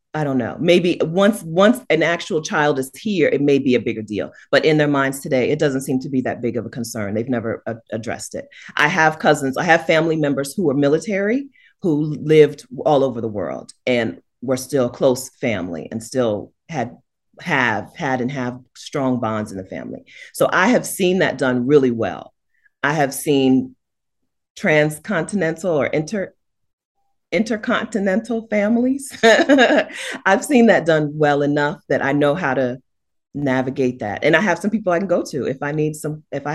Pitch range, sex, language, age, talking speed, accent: 130-190 Hz, female, English, 40-59, 190 wpm, American